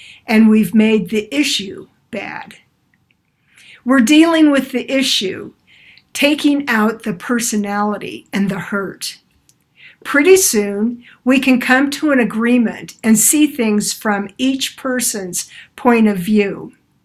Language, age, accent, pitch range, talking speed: English, 60-79, American, 210-260 Hz, 125 wpm